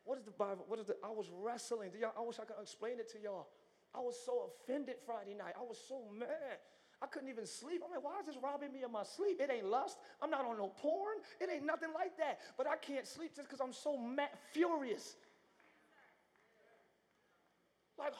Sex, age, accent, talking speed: male, 30-49, American, 220 wpm